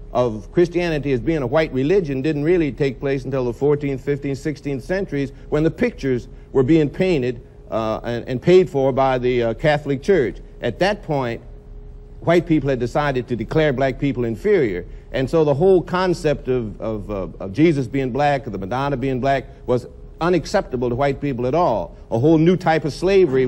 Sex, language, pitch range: male, English, 135-165 Hz